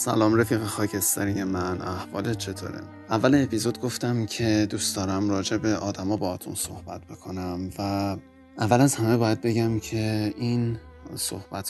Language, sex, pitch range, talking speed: Persian, male, 95-110 Hz, 140 wpm